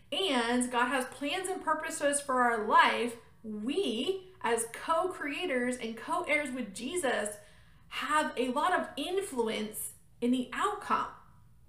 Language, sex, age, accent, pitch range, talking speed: English, female, 30-49, American, 235-305 Hz, 125 wpm